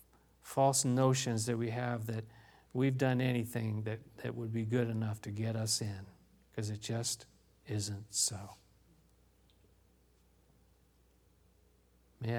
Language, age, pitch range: English, 50-69, 100-135 Hz